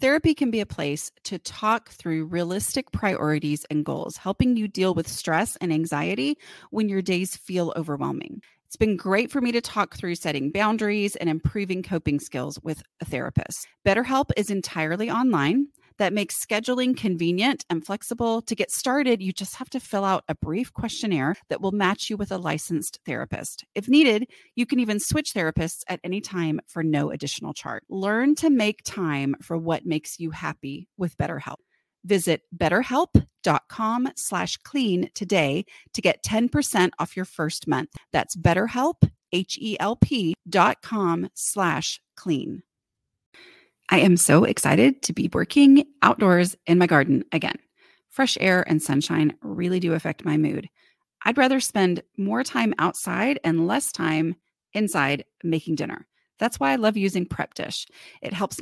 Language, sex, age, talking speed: English, female, 30-49, 160 wpm